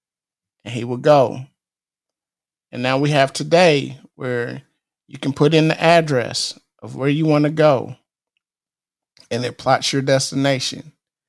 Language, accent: English, American